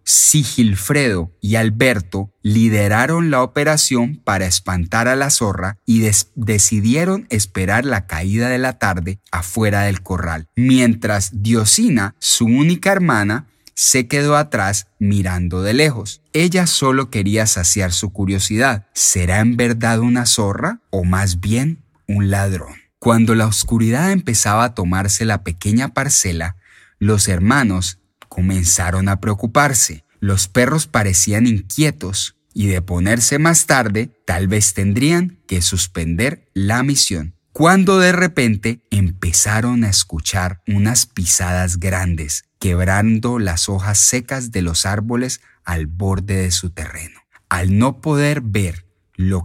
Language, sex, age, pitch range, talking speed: Spanish, male, 30-49, 95-120 Hz, 125 wpm